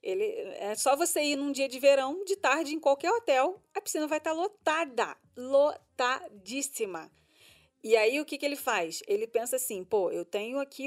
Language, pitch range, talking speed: Portuguese, 225-300 Hz, 180 wpm